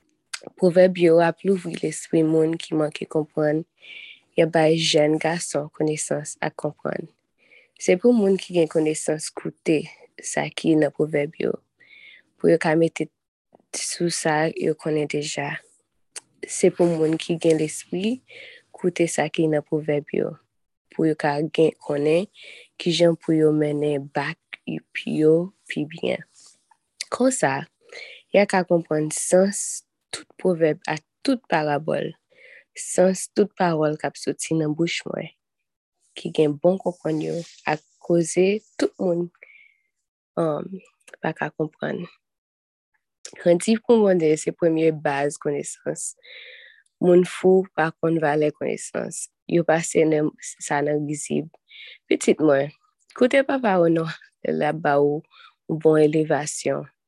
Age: 20-39